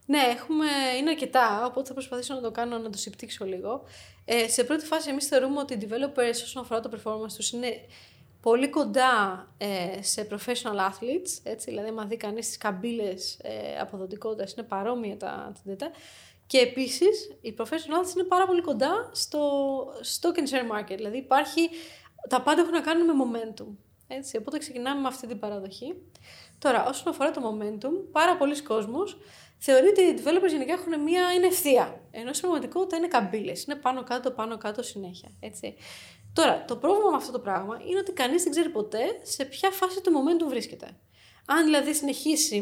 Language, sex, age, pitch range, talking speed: Greek, female, 20-39, 215-315 Hz, 175 wpm